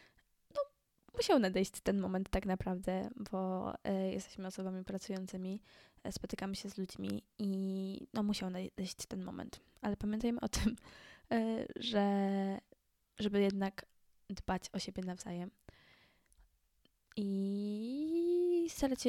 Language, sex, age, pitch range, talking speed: Polish, female, 10-29, 185-215 Hz, 110 wpm